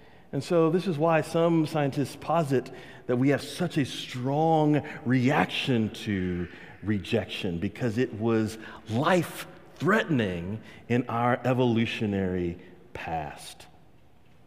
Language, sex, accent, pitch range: English, male, American, 105-155 Hz